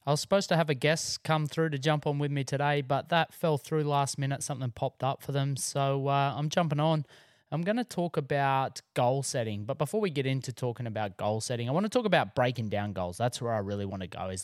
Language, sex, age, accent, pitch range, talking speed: English, male, 20-39, Australian, 105-145 Hz, 260 wpm